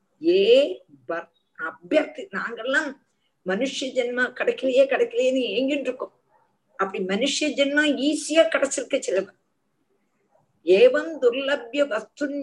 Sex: female